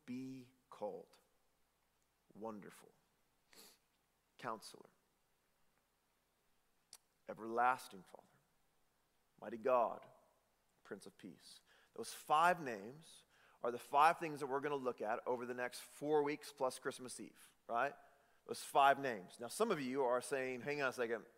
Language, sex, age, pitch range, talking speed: English, male, 40-59, 125-190 Hz, 130 wpm